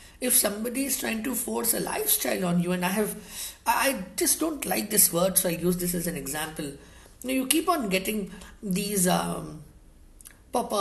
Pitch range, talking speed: 185-270 Hz, 185 wpm